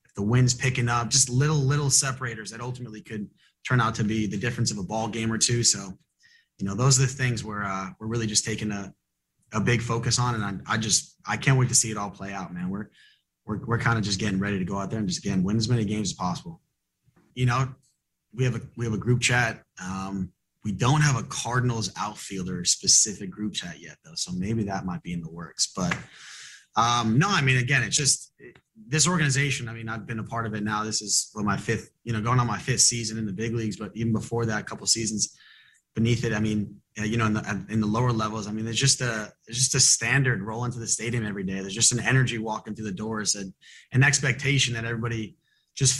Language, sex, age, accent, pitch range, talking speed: English, male, 30-49, American, 105-130 Hz, 245 wpm